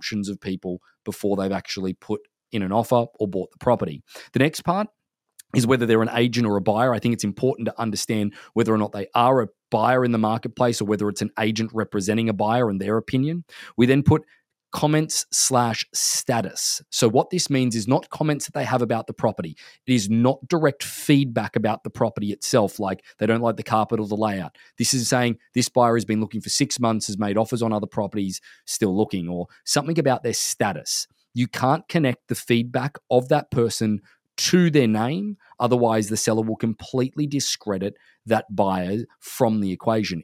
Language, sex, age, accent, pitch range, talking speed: English, male, 20-39, Australian, 110-135 Hz, 200 wpm